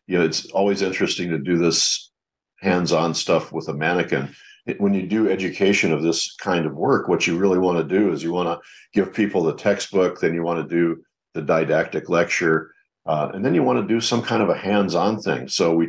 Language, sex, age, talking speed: English, male, 50-69, 225 wpm